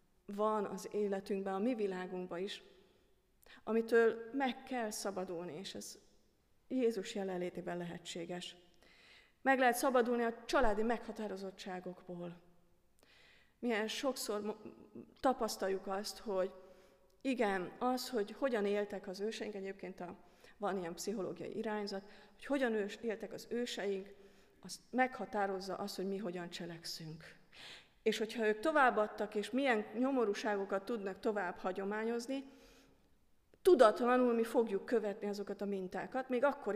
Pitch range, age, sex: 190-235 Hz, 30-49, female